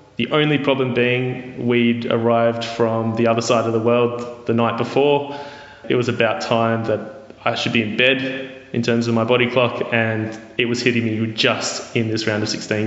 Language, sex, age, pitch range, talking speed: English, male, 20-39, 115-125 Hz, 200 wpm